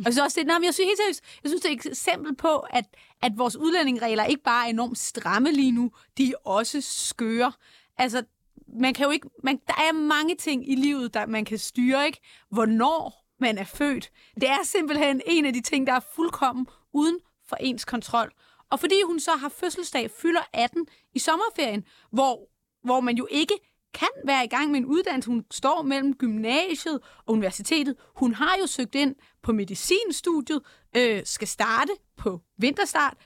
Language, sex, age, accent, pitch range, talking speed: Danish, female, 30-49, native, 245-320 Hz, 185 wpm